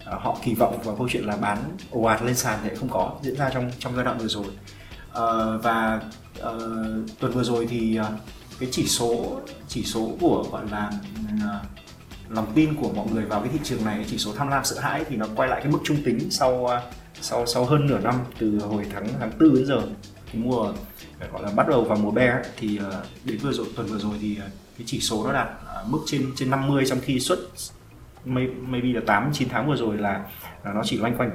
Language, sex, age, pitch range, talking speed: Vietnamese, male, 20-39, 105-130 Hz, 230 wpm